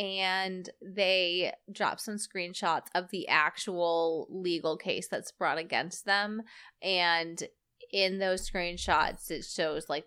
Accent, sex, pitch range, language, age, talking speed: American, female, 170-210 Hz, English, 20-39, 125 wpm